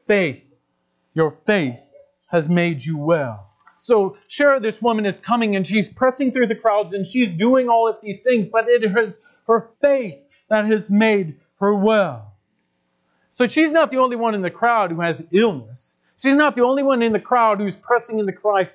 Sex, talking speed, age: male, 190 wpm, 40-59